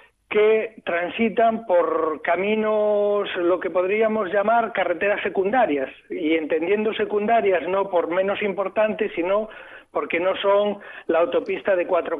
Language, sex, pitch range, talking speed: Spanish, male, 155-190 Hz, 125 wpm